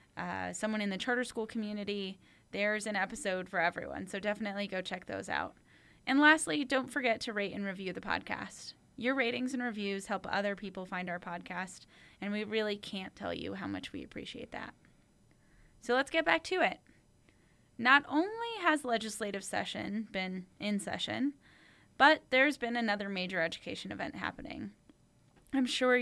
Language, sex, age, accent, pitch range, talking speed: English, female, 10-29, American, 205-260 Hz, 170 wpm